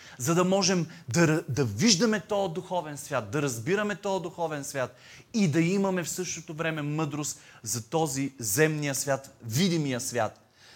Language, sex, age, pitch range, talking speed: Bulgarian, male, 30-49, 135-195 Hz, 150 wpm